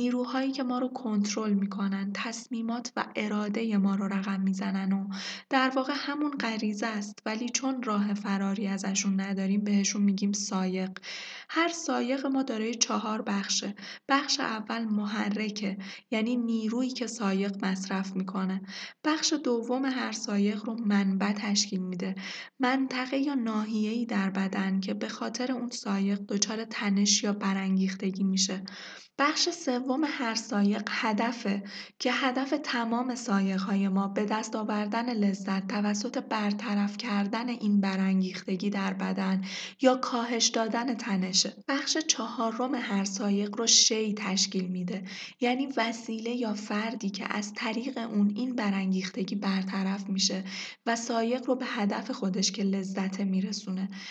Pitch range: 195-240 Hz